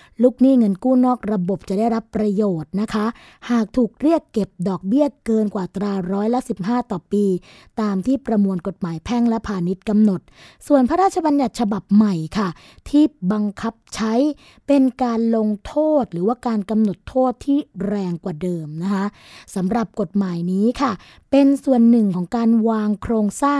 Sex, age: female, 20-39